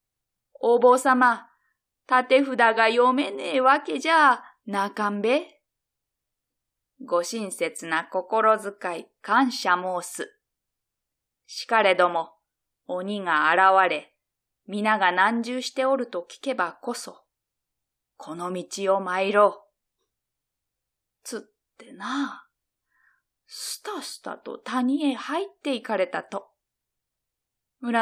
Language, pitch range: Japanese, 200-280 Hz